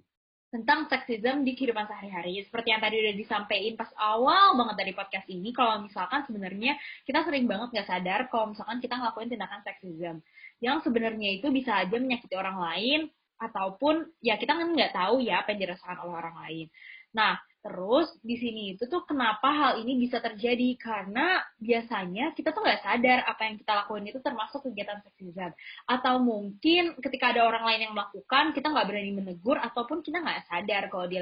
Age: 20-39